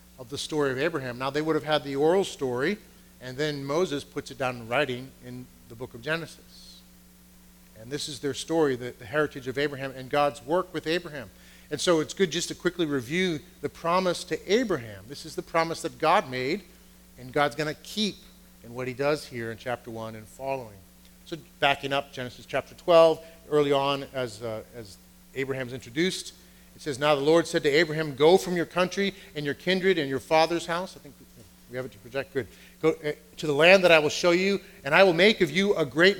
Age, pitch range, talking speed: 40-59, 130-180 Hz, 215 wpm